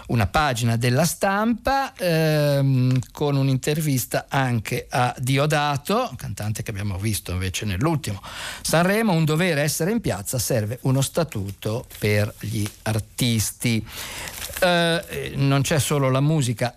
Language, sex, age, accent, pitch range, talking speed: Italian, male, 50-69, native, 120-155 Hz, 120 wpm